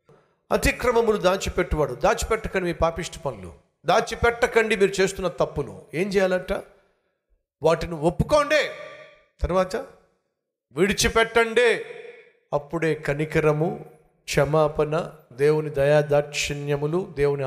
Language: Telugu